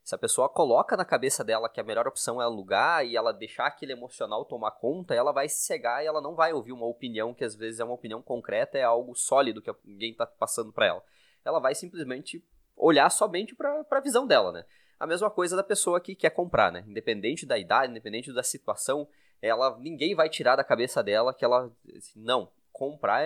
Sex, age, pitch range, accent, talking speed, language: male, 20-39, 120-180 Hz, Brazilian, 215 wpm, Portuguese